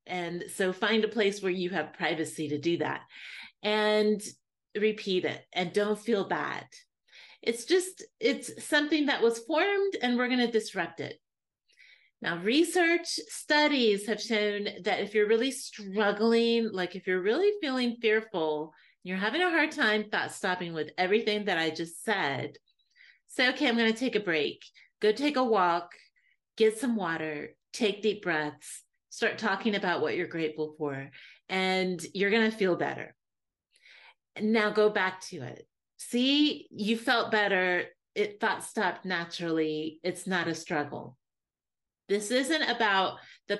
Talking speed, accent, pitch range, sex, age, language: 155 wpm, American, 175-230 Hz, female, 30-49, English